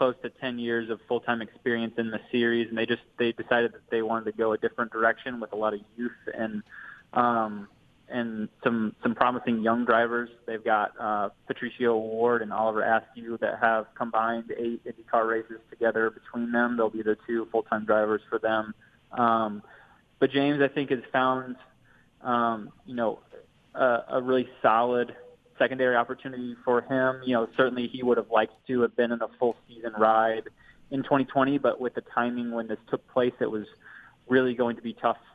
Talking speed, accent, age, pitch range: 190 wpm, American, 20-39, 110-125 Hz